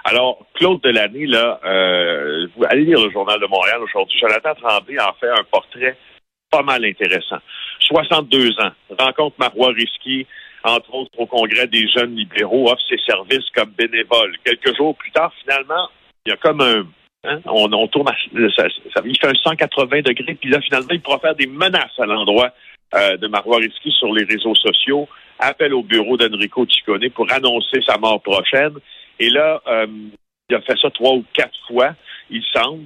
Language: French